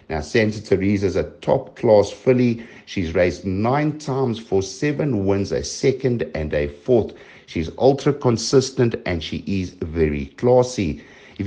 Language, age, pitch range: English, 60-79, 85-115 Hz